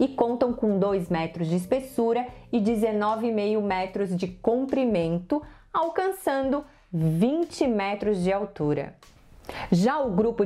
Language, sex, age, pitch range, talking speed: Portuguese, female, 30-49, 200-270 Hz, 115 wpm